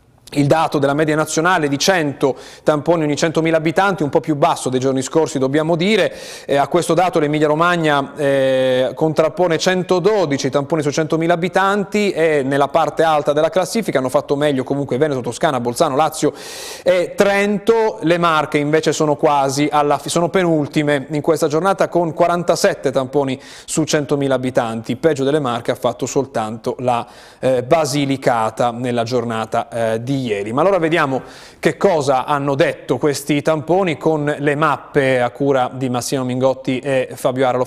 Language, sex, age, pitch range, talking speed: Italian, male, 30-49, 135-165 Hz, 160 wpm